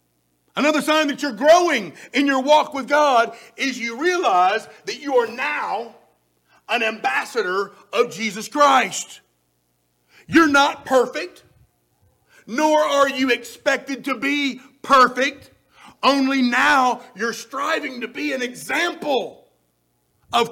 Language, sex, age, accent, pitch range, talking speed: English, male, 50-69, American, 230-290 Hz, 120 wpm